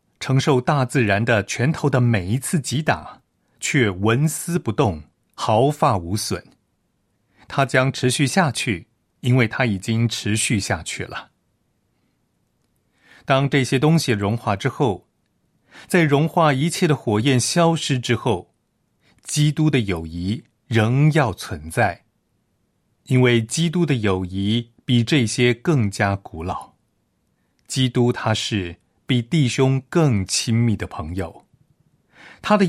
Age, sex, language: 30-49, male, Chinese